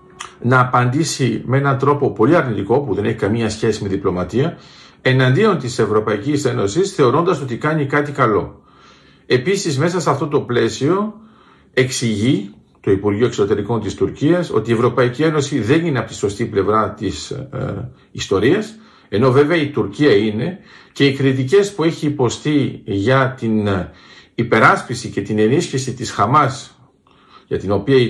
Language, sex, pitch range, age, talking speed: Greek, male, 115-145 Hz, 50-69, 155 wpm